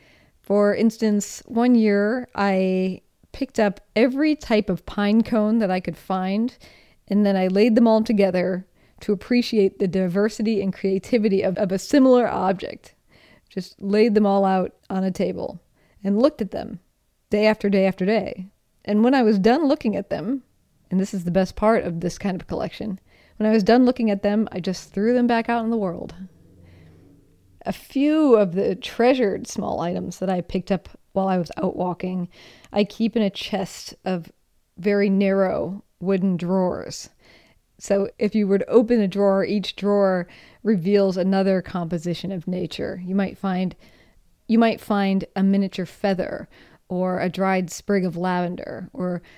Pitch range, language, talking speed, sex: 185-215 Hz, English, 175 wpm, female